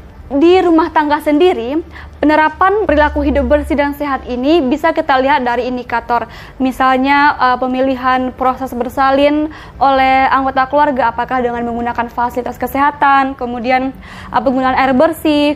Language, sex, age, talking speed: Indonesian, female, 20-39, 125 wpm